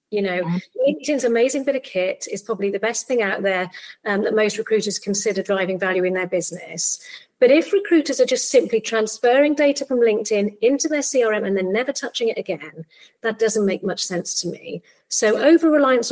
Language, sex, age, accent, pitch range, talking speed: English, female, 40-59, British, 185-250 Hz, 195 wpm